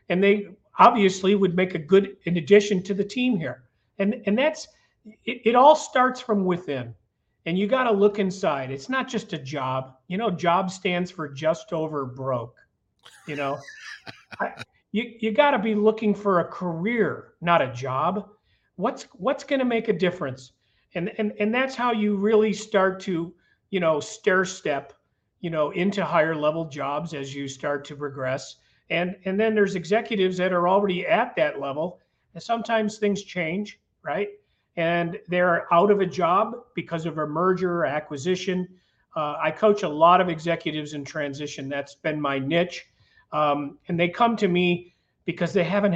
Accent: American